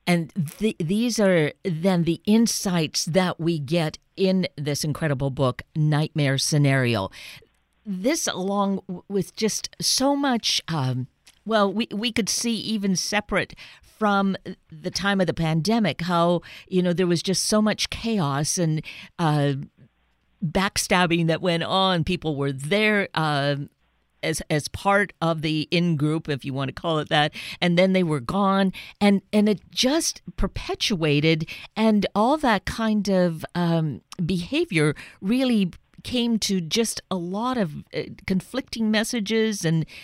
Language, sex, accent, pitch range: English, female, American, 155-210 Hz